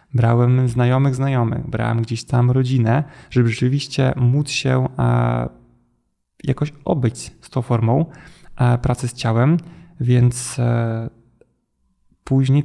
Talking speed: 100 wpm